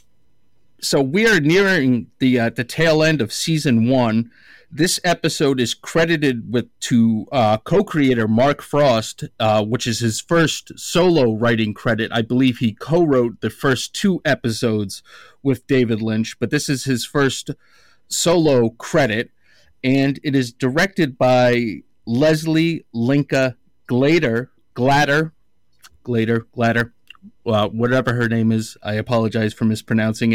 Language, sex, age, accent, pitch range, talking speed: English, male, 30-49, American, 115-150 Hz, 140 wpm